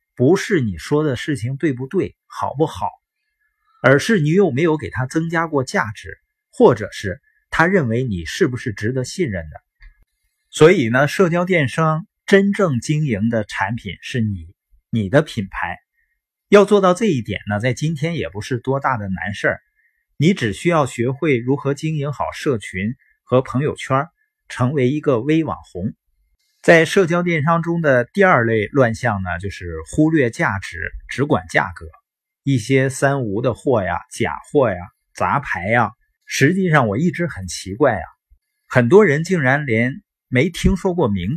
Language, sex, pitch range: Chinese, male, 115-170 Hz